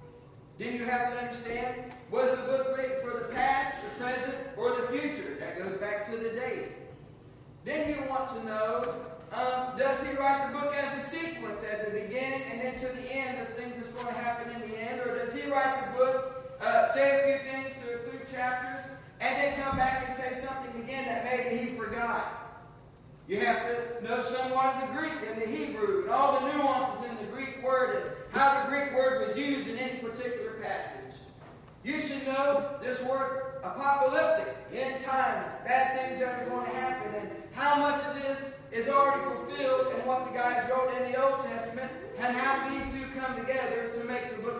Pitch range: 235-275 Hz